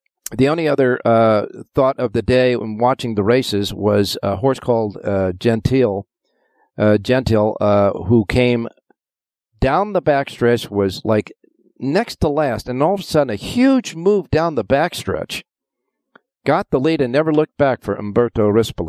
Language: English